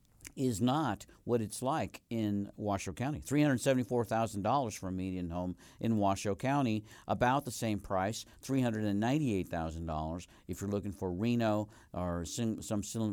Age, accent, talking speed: 50-69, American, 135 wpm